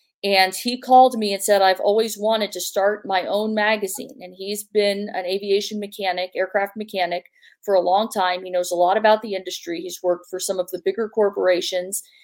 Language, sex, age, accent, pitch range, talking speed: English, female, 40-59, American, 185-210 Hz, 200 wpm